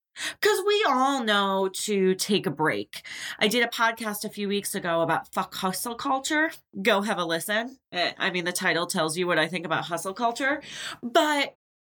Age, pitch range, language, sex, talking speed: 20-39, 185-285 Hz, English, female, 185 wpm